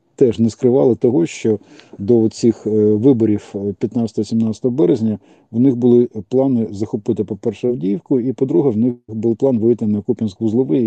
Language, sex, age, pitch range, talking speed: Ukrainian, male, 40-59, 100-115 Hz, 150 wpm